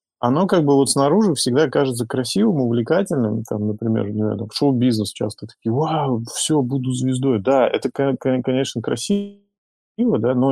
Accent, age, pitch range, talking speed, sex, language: native, 30-49, 115-145 Hz, 145 wpm, male, Russian